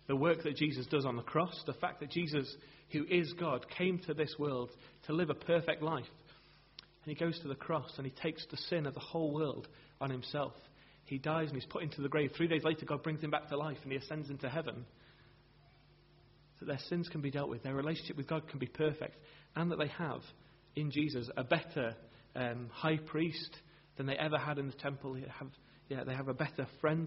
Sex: male